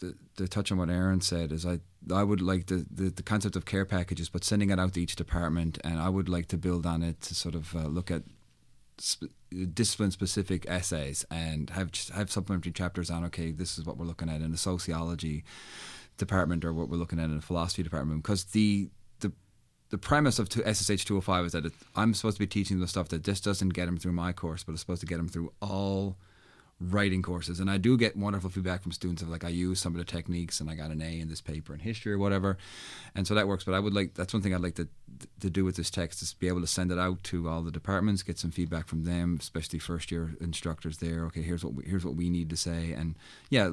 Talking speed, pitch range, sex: 255 wpm, 80-95 Hz, male